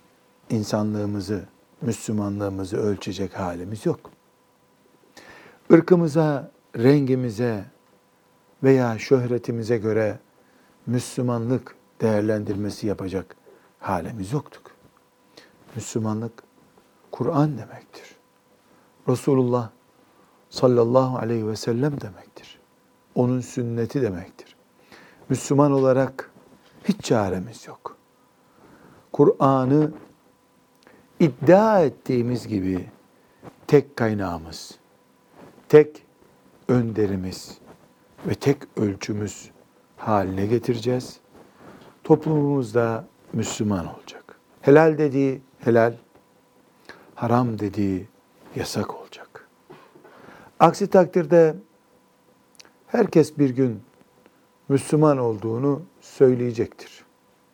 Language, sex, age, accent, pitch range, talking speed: Turkish, male, 60-79, native, 110-140 Hz, 65 wpm